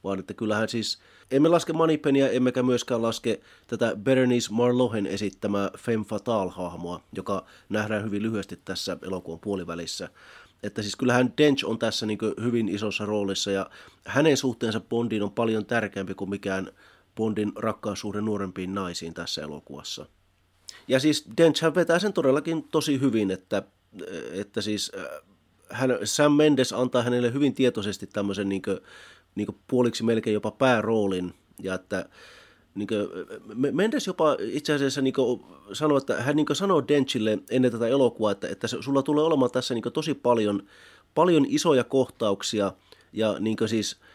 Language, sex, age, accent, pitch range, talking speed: Finnish, male, 30-49, native, 100-130 Hz, 145 wpm